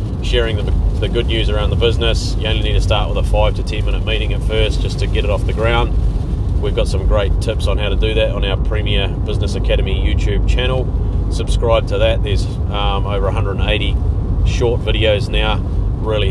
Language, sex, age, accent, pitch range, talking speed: English, male, 30-49, Australian, 95-105 Hz, 210 wpm